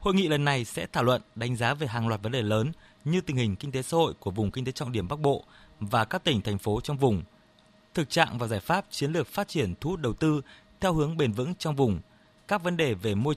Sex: male